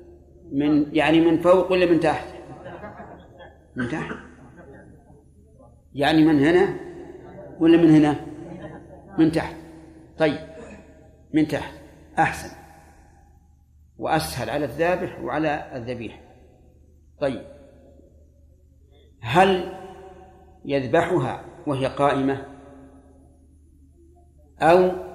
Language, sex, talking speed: Arabic, male, 75 wpm